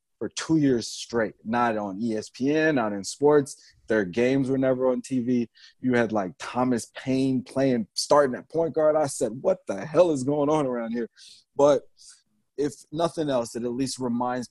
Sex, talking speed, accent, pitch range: male, 180 wpm, American, 105-125 Hz